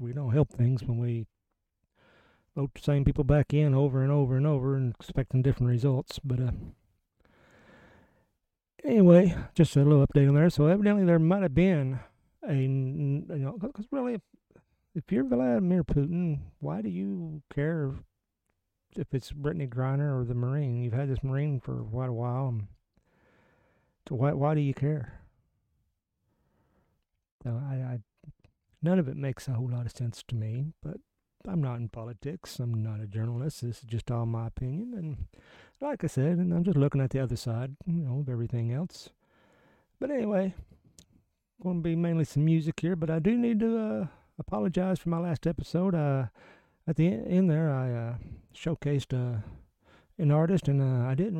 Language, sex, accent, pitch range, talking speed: English, male, American, 125-165 Hz, 180 wpm